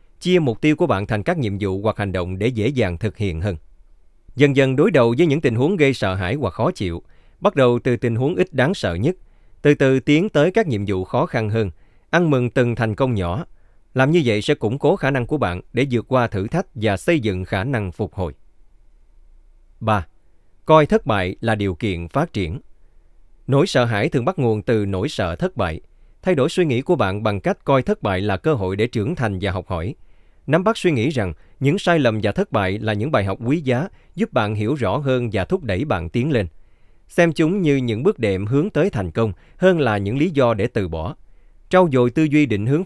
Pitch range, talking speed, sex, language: 95-140 Hz, 240 wpm, male, Vietnamese